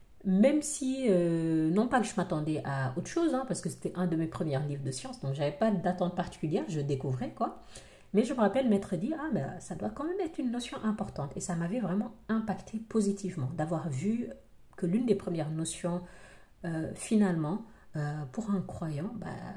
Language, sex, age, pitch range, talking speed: French, female, 40-59, 165-215 Hz, 200 wpm